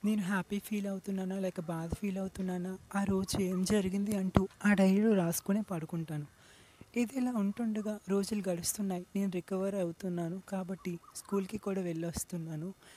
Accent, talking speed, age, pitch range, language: native, 135 wpm, 30-49, 195-235 Hz, Telugu